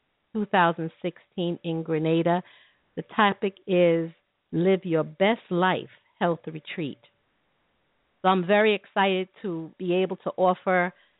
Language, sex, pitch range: English, female, 165-200 Hz